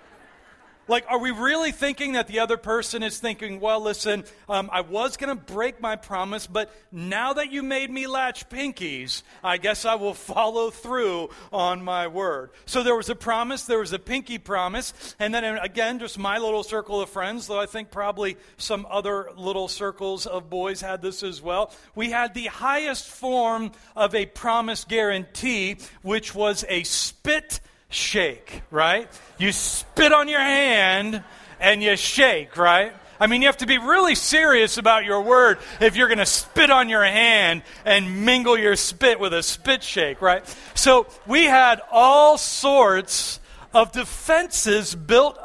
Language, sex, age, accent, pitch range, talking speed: English, male, 40-59, American, 195-245 Hz, 175 wpm